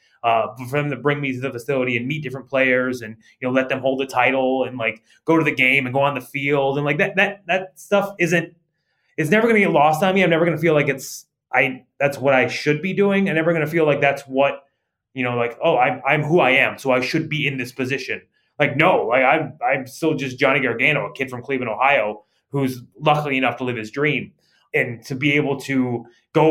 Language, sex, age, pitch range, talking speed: English, male, 20-39, 130-155 Hz, 250 wpm